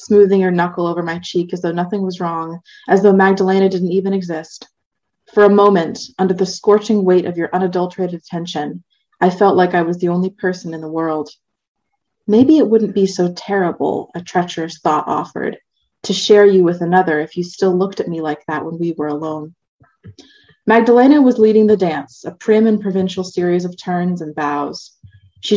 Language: English